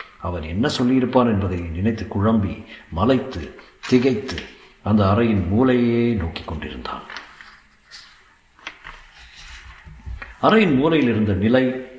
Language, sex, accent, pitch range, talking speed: Tamil, male, native, 100-125 Hz, 80 wpm